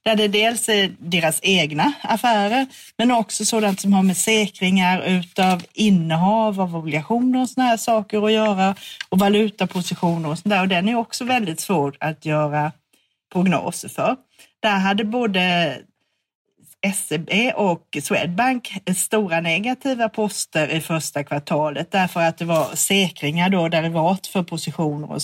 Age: 40-59